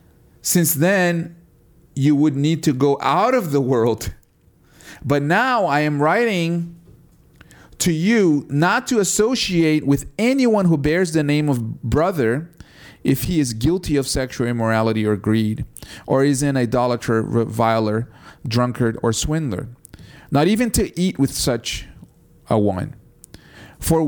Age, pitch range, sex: 40-59, 110-145 Hz, male